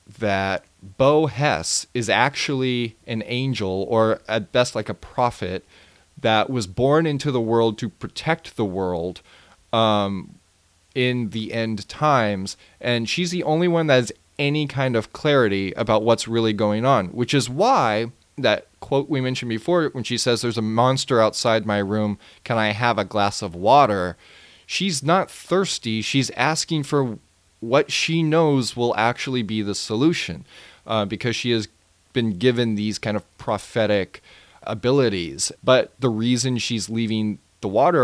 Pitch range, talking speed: 105-140 Hz, 160 wpm